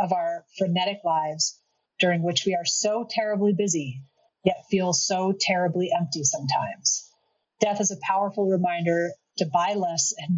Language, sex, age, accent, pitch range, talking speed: English, female, 30-49, American, 165-195 Hz, 150 wpm